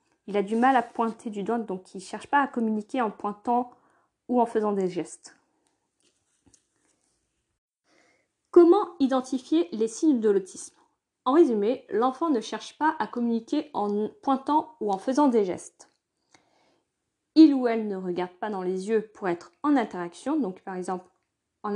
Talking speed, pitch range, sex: 165 wpm, 200-270 Hz, female